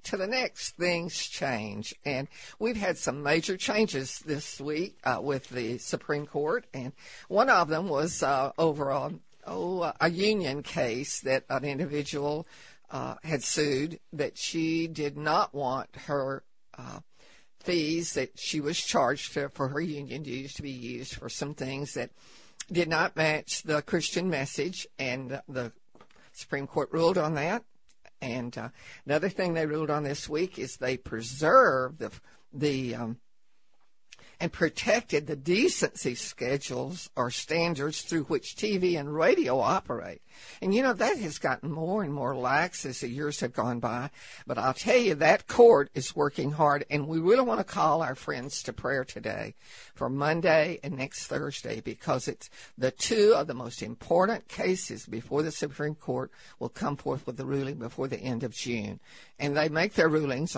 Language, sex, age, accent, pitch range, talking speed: English, female, 60-79, American, 135-165 Hz, 165 wpm